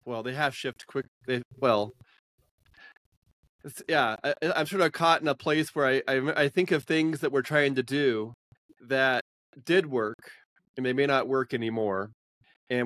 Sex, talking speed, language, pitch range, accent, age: male, 175 wpm, English, 115-135 Hz, American, 20-39